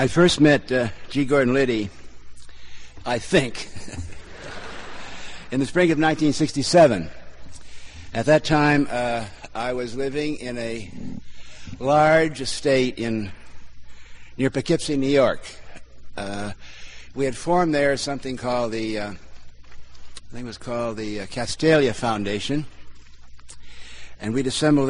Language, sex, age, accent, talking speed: English, male, 60-79, American, 125 wpm